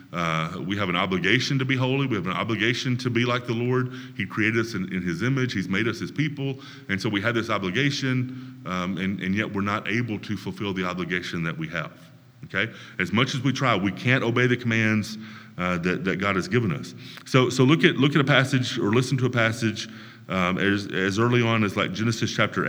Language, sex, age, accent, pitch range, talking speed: English, male, 30-49, American, 105-130 Hz, 235 wpm